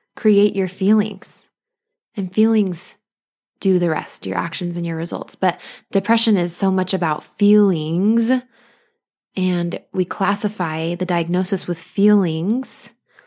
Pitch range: 180-225 Hz